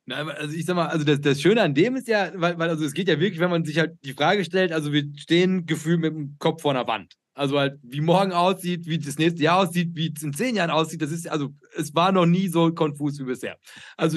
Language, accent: German, German